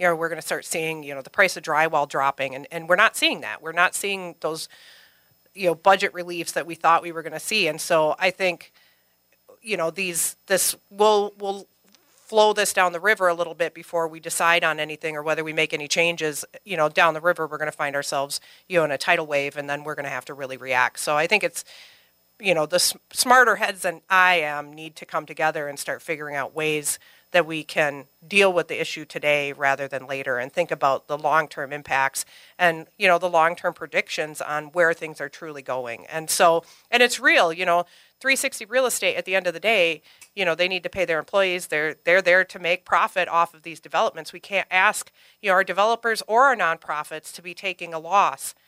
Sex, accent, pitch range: female, American, 155-185 Hz